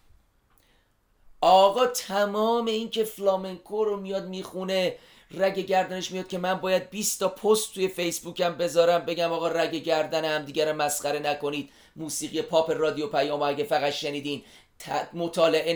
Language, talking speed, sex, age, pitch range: Persian, 135 wpm, male, 40-59, 160-205 Hz